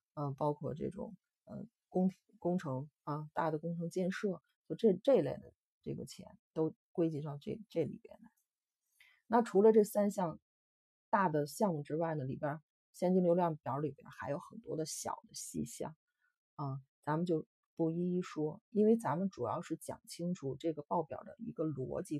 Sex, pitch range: female, 150-210 Hz